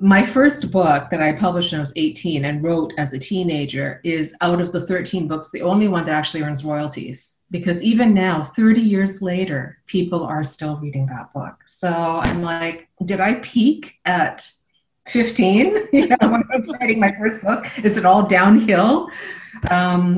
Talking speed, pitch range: 185 wpm, 145-190 Hz